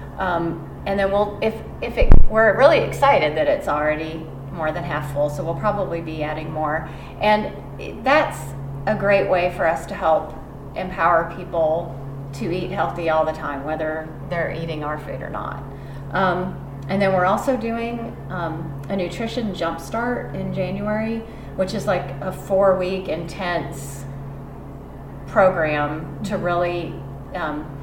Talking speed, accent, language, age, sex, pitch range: 150 wpm, American, English, 30-49, female, 145-190 Hz